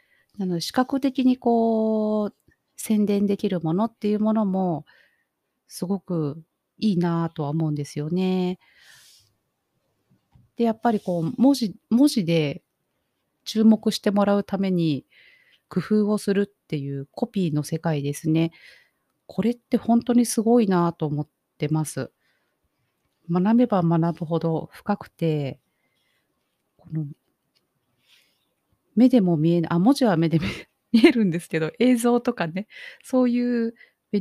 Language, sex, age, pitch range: Japanese, female, 40-59, 160-220 Hz